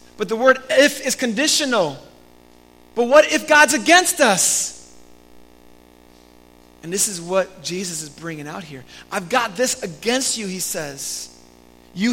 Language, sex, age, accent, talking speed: English, male, 30-49, American, 145 wpm